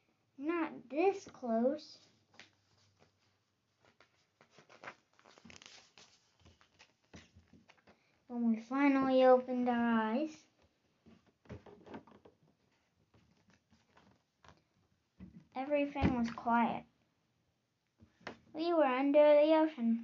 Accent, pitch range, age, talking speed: American, 225-270 Hz, 10-29, 50 wpm